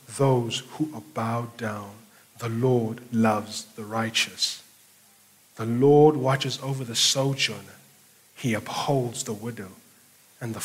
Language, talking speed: English, 125 wpm